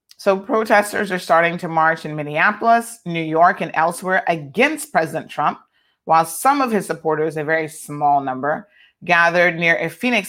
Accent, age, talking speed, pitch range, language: American, 30-49, 165 wpm, 160-195 Hz, English